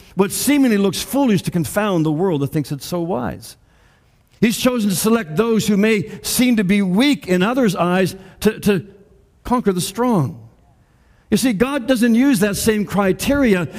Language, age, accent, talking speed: English, 60-79, American, 175 wpm